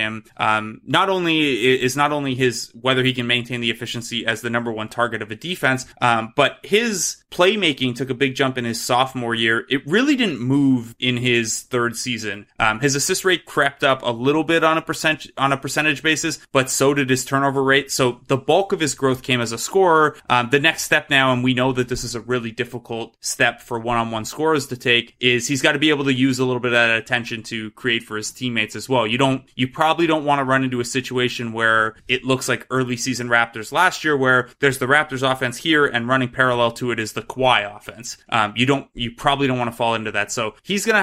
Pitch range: 115-135 Hz